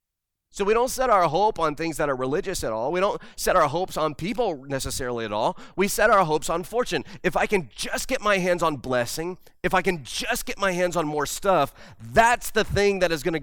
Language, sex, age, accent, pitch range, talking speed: English, male, 30-49, American, 120-185 Hz, 240 wpm